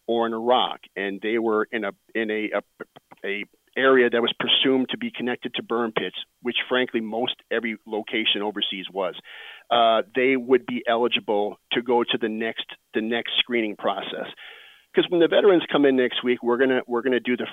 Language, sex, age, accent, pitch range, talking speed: English, male, 40-59, American, 115-130 Hz, 200 wpm